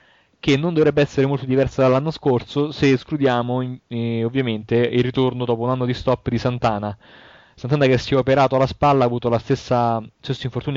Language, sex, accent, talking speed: Italian, male, native, 195 wpm